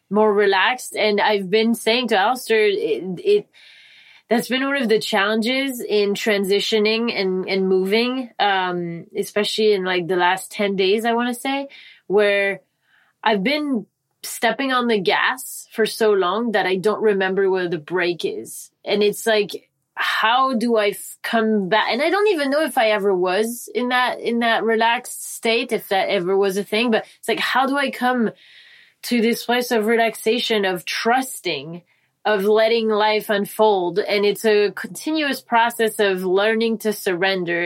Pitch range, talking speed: 190-230 Hz, 170 wpm